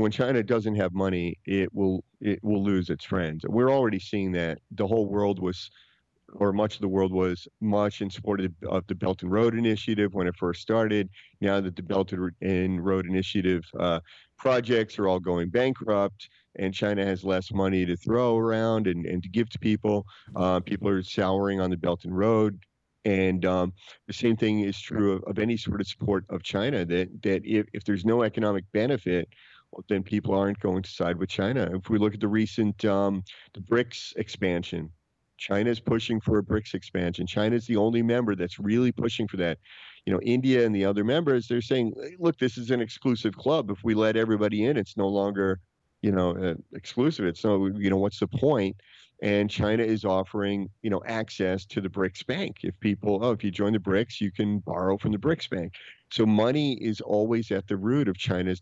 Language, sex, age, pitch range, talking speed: English, male, 40-59, 95-110 Hz, 210 wpm